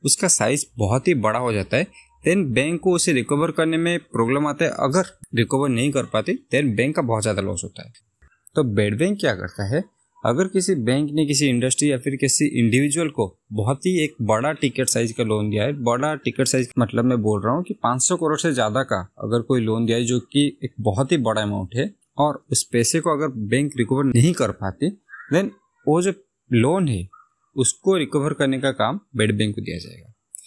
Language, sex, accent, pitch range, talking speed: Hindi, male, native, 115-160 Hz, 215 wpm